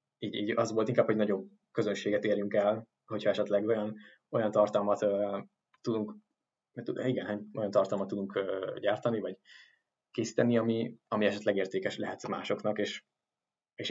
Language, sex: Hungarian, male